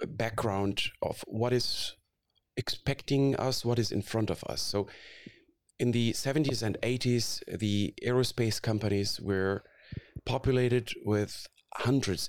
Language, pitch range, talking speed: English, 100-125 Hz, 120 wpm